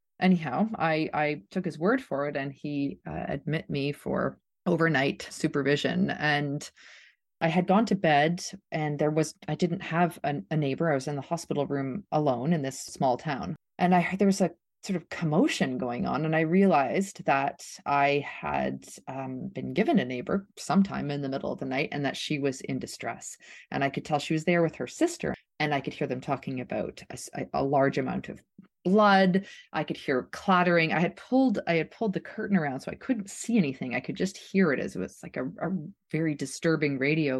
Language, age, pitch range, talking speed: English, 30-49, 140-190 Hz, 210 wpm